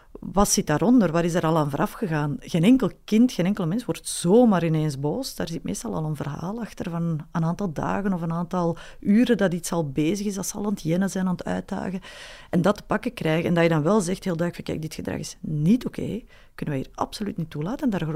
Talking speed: 260 wpm